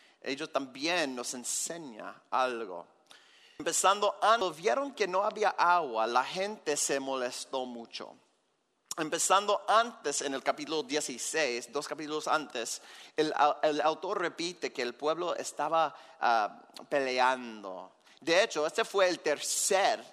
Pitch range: 145-190 Hz